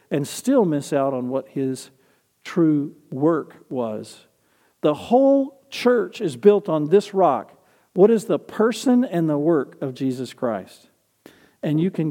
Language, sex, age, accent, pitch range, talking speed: English, male, 50-69, American, 130-170 Hz, 155 wpm